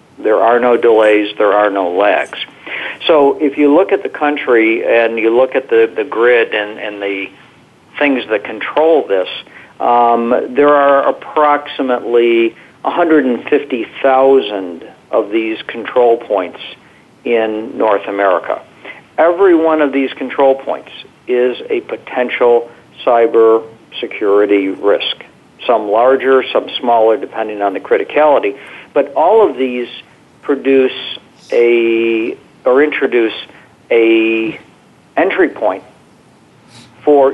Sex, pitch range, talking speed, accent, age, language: male, 115-140 Hz, 115 wpm, American, 50-69, English